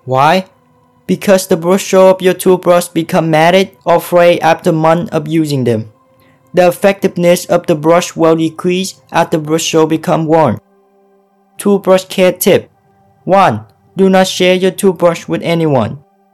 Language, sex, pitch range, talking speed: English, male, 160-185 Hz, 150 wpm